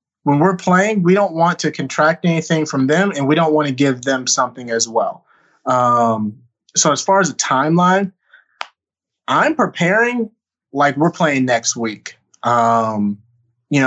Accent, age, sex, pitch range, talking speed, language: American, 20-39, male, 120-155 Hz, 160 wpm, English